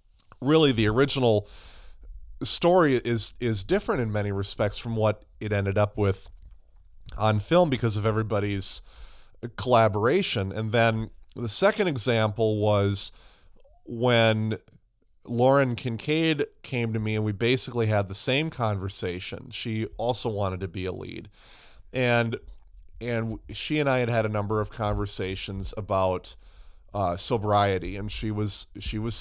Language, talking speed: English, 140 wpm